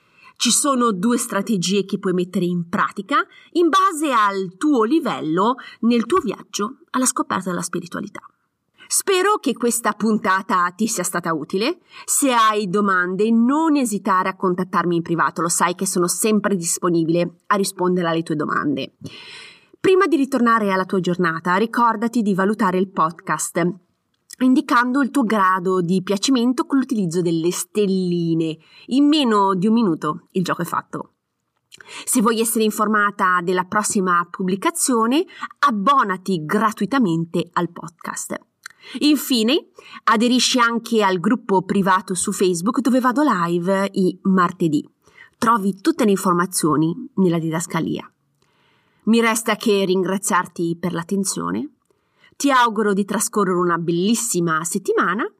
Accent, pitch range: native, 180-255 Hz